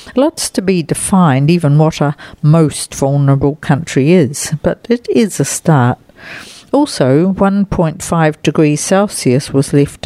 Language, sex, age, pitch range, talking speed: English, female, 60-79, 145-180 Hz, 130 wpm